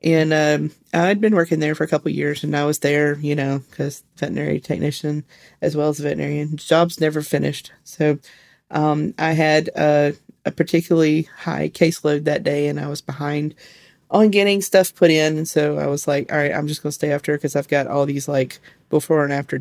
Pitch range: 145-165 Hz